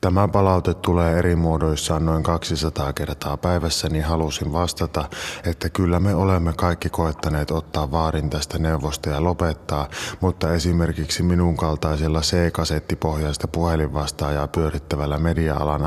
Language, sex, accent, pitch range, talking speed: Finnish, male, native, 75-95 Hz, 120 wpm